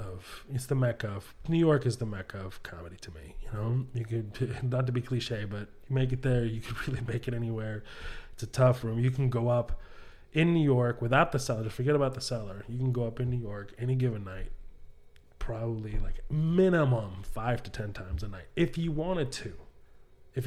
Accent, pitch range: American, 105-135 Hz